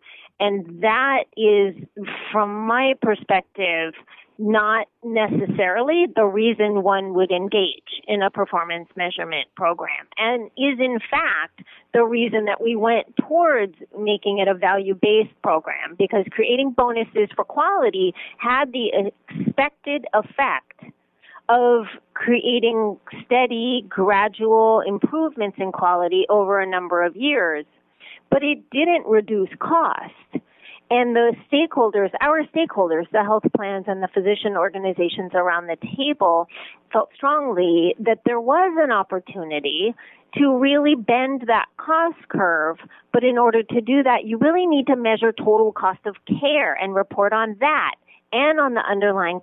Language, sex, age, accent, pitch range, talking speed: English, female, 40-59, American, 195-260 Hz, 135 wpm